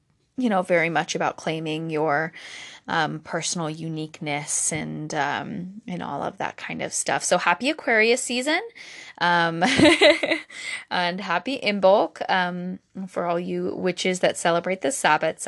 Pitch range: 165-225 Hz